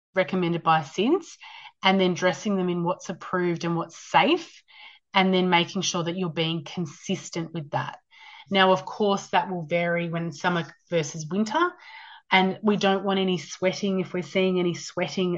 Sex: female